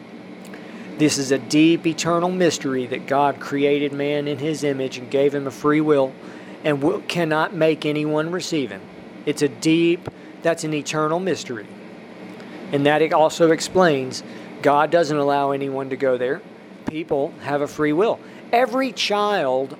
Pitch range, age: 140-170 Hz, 40-59